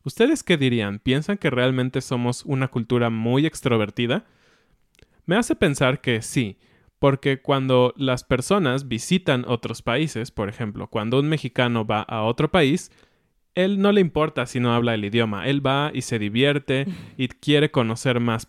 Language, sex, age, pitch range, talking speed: Spanish, male, 20-39, 120-150 Hz, 160 wpm